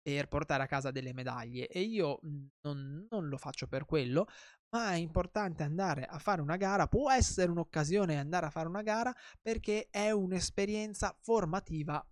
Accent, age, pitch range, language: native, 20-39, 145-195 Hz, Italian